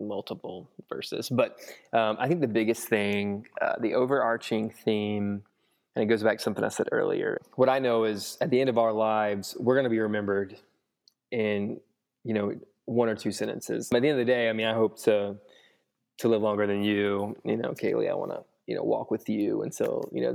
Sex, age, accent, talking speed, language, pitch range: male, 20-39, American, 220 wpm, English, 105-120 Hz